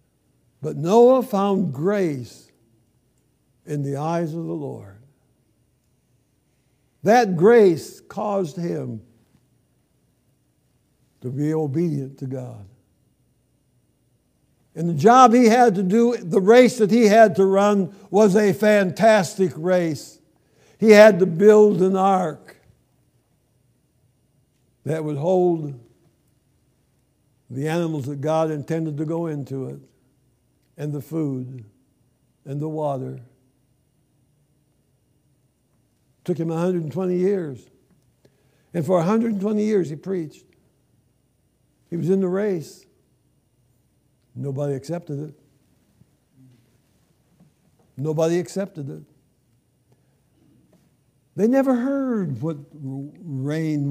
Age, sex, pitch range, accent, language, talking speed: 60-79, male, 130-190 Hz, American, English, 95 wpm